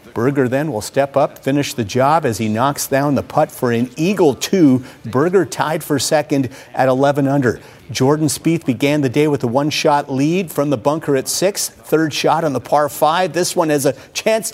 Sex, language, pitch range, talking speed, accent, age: male, English, 125-160 Hz, 200 wpm, American, 50-69